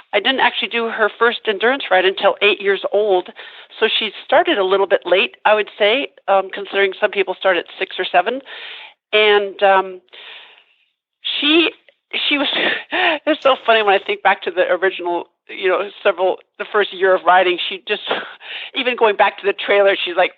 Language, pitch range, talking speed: English, 175-220 Hz, 190 wpm